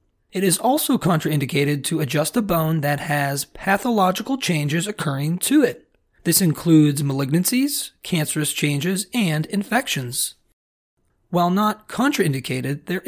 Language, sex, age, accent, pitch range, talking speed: English, male, 30-49, American, 145-210 Hz, 120 wpm